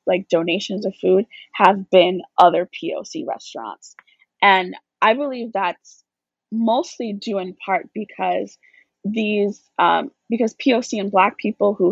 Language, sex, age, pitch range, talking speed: English, female, 20-39, 185-230 Hz, 130 wpm